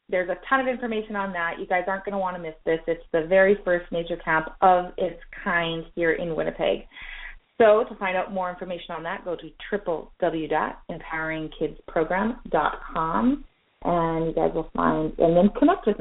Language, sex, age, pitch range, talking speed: English, female, 30-49, 170-235 Hz, 180 wpm